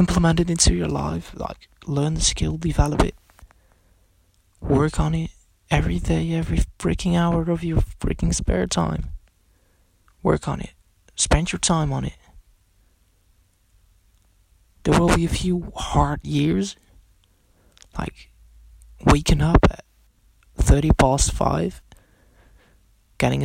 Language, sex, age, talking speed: English, male, 20-39, 120 wpm